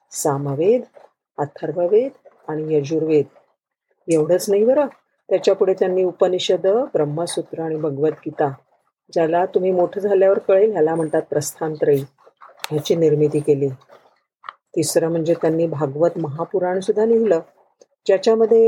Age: 50-69